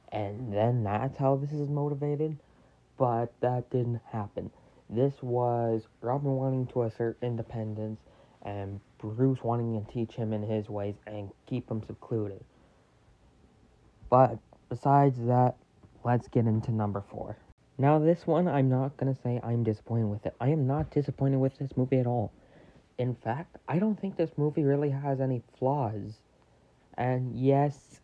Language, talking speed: English, 155 wpm